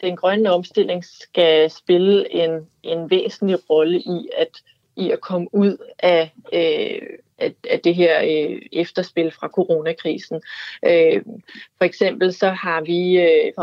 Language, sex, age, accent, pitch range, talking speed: Danish, female, 30-49, native, 170-195 Hz, 130 wpm